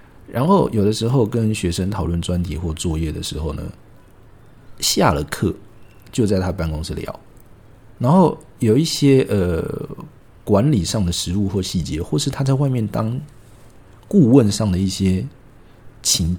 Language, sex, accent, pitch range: Chinese, male, native, 90-125 Hz